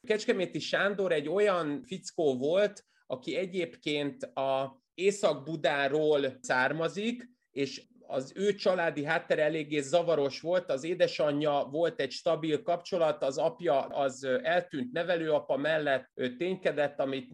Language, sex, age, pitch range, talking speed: Hungarian, male, 30-49, 135-175 Hz, 120 wpm